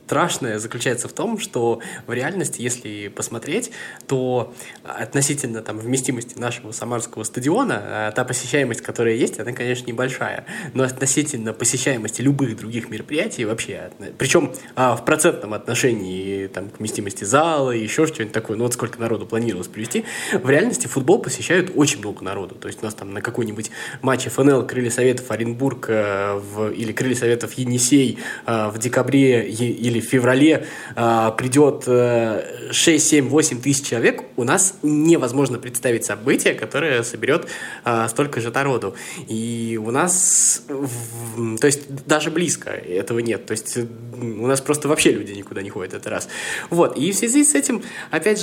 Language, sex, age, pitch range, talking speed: Russian, male, 20-39, 115-145 Hz, 150 wpm